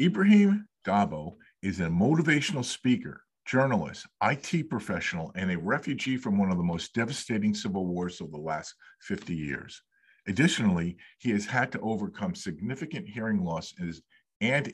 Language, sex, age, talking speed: English, male, 50-69, 145 wpm